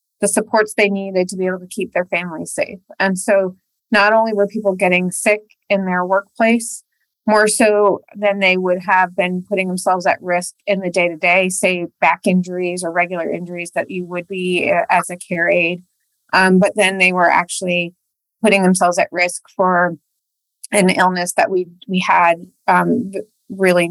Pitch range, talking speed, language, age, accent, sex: 180-215 Hz, 175 wpm, English, 30-49, American, female